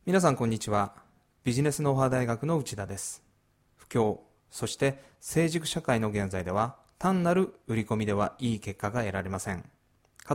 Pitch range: 105-160 Hz